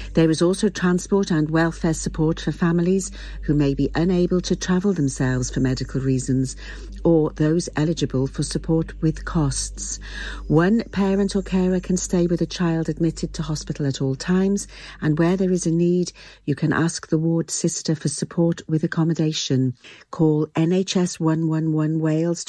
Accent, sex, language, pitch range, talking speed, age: British, female, English, 150-185 Hz, 160 wpm, 50-69